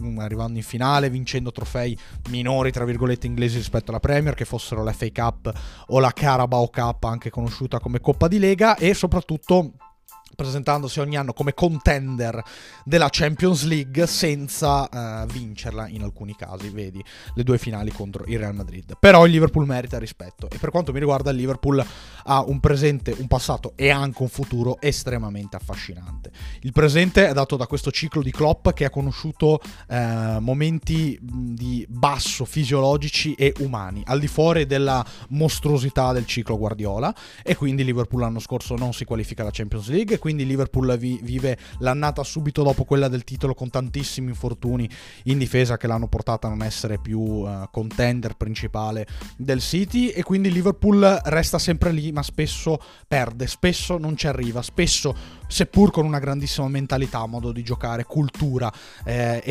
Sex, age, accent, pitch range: male, 20-39, native, 115-145 Hz